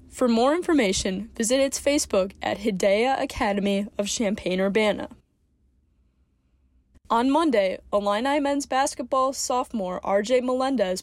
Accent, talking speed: American, 105 wpm